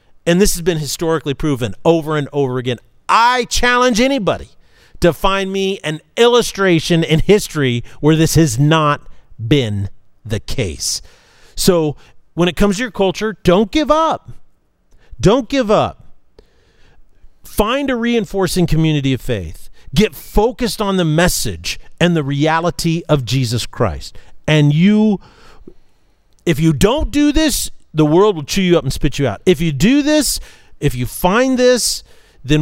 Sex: male